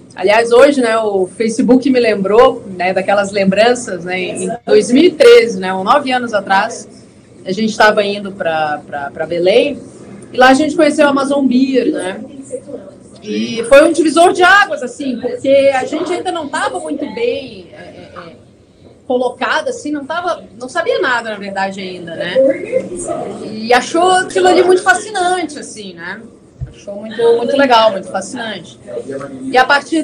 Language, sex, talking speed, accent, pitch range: Portuguese, female, 150 wpm, Brazilian, 220-295 Hz